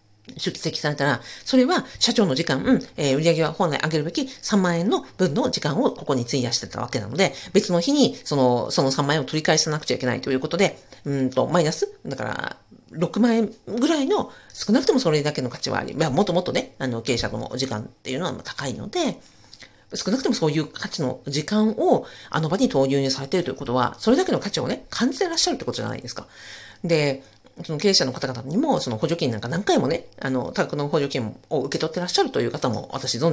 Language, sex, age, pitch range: Japanese, female, 40-59, 130-210 Hz